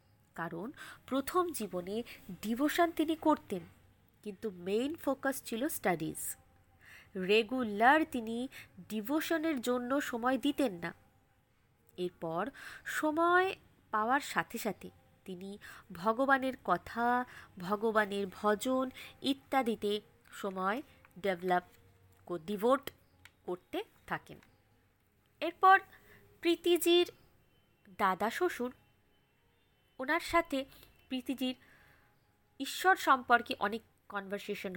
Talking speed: 80 wpm